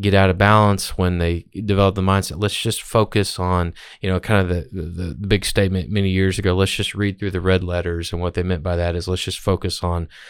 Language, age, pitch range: English, 20-39, 90-105 Hz